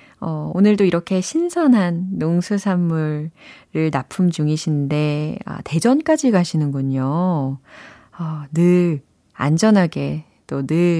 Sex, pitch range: female, 155-215 Hz